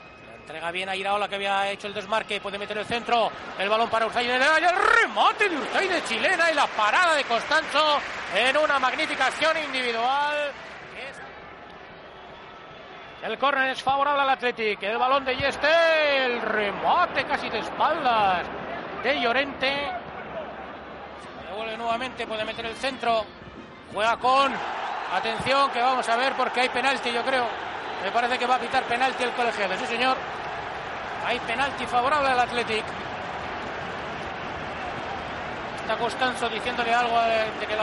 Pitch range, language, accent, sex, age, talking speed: 225-275 Hz, Spanish, Spanish, male, 30-49, 150 wpm